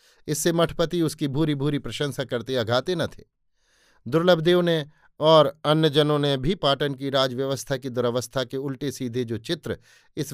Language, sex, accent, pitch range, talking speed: Hindi, male, native, 125-150 Hz, 165 wpm